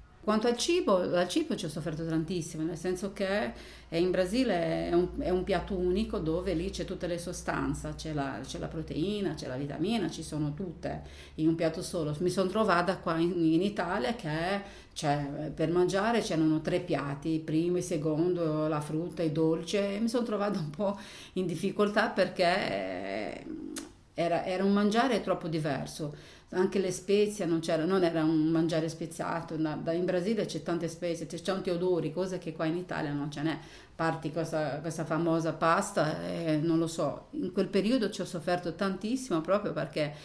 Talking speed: 185 wpm